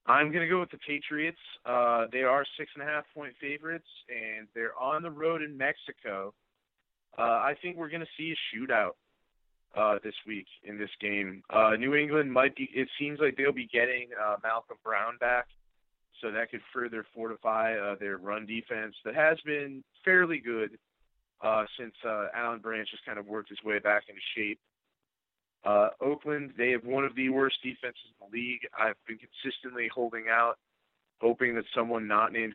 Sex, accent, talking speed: male, American, 185 wpm